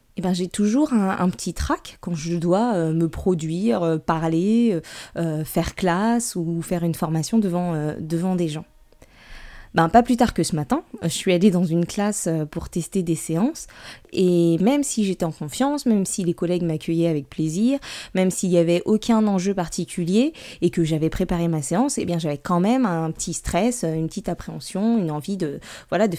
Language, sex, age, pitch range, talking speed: French, female, 20-39, 170-230 Hz, 200 wpm